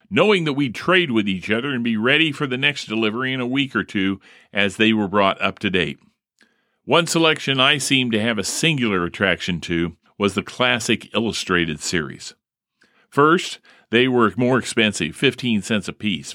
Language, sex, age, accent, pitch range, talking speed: English, male, 50-69, American, 105-135 Hz, 180 wpm